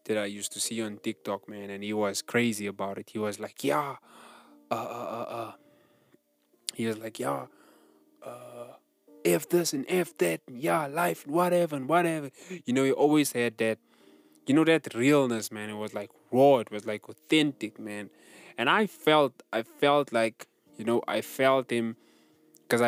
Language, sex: English, male